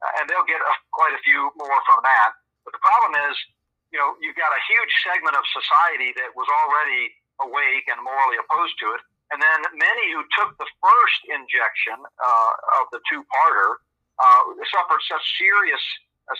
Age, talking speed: 50-69, 185 wpm